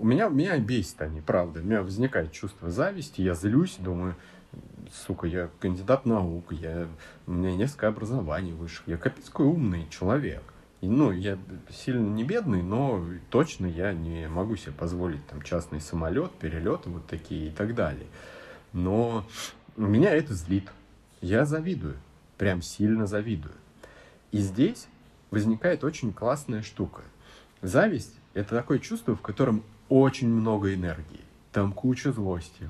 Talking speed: 145 wpm